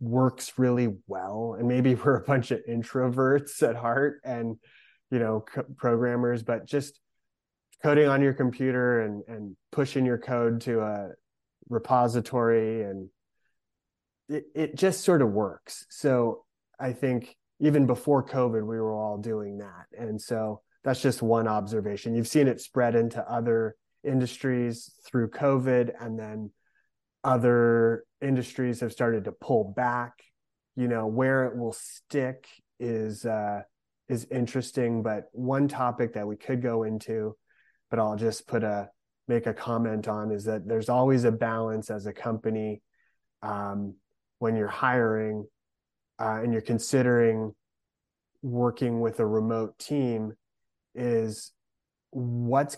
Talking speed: 140 wpm